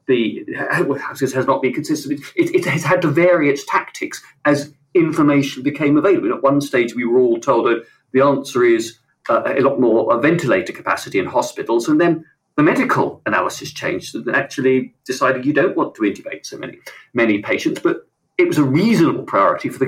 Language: English